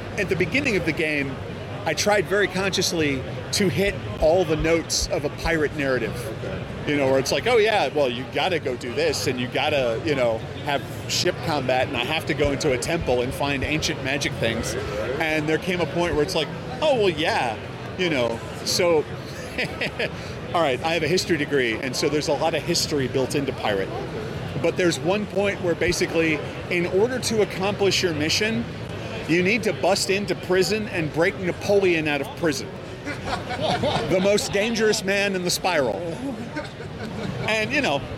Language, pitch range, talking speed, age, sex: English, 145-195 Hz, 185 wpm, 40-59, male